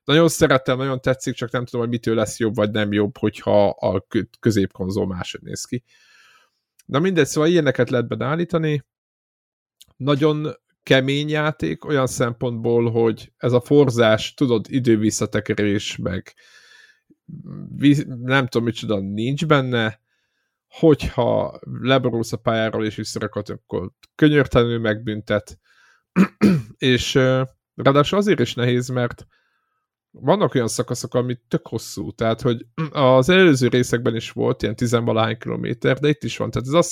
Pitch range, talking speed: 115-150 Hz, 130 wpm